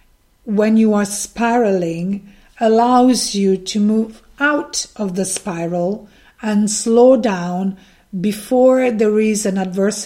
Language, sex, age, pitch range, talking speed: English, female, 50-69, 195-255 Hz, 120 wpm